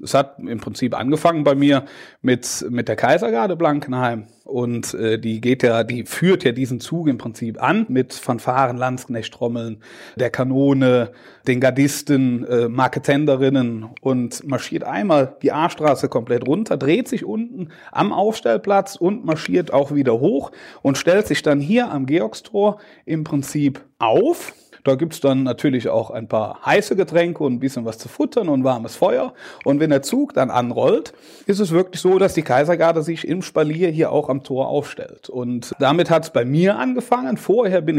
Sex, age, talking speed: male, 30-49, 175 wpm